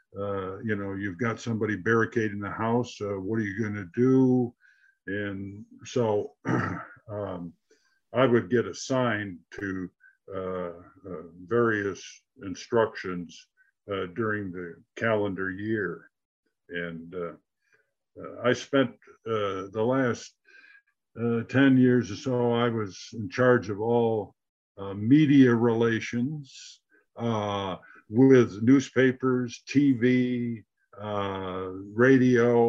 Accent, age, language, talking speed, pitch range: American, 50-69, English, 110 wpm, 100-125 Hz